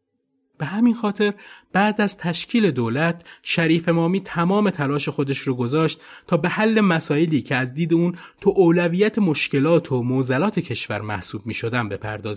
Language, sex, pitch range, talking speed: Persian, male, 125-170 Hz, 150 wpm